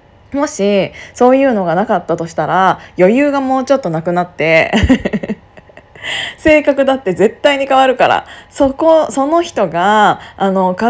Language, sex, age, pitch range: Japanese, female, 20-39, 185-305 Hz